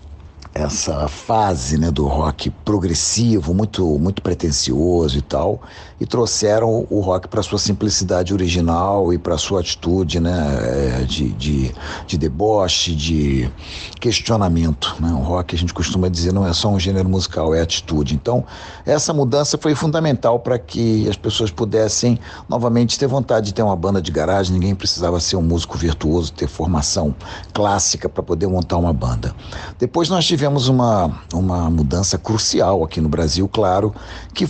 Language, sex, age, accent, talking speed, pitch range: Portuguese, male, 60-79, Brazilian, 160 wpm, 80-105 Hz